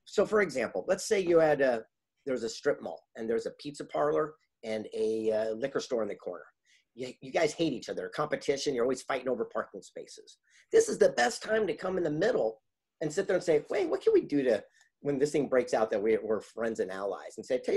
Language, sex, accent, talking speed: English, male, American, 245 wpm